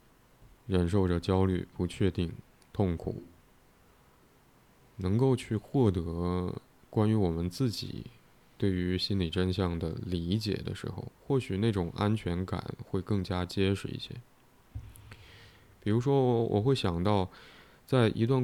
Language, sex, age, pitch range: Chinese, male, 20-39, 90-115 Hz